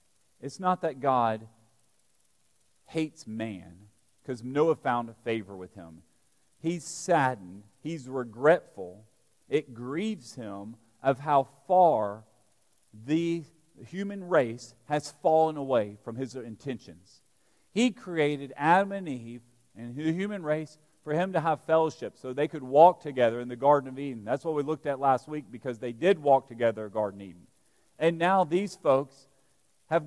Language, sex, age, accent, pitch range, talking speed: English, male, 40-59, American, 120-170 Hz, 155 wpm